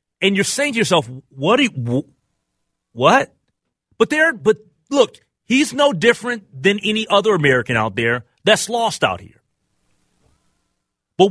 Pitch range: 130-200 Hz